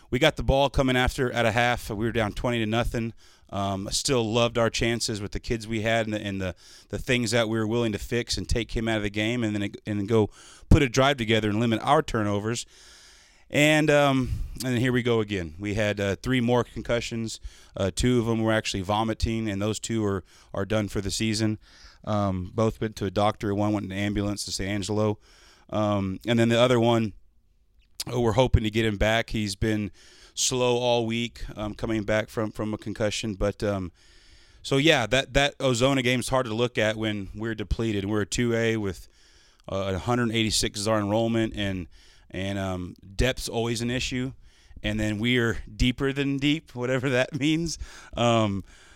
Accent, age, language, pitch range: American, 30-49, English, 105-120 Hz